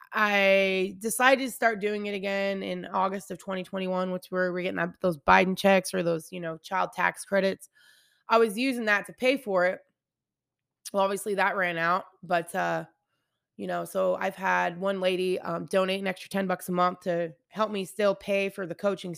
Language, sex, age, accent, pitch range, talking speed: English, female, 20-39, American, 180-215 Hz, 200 wpm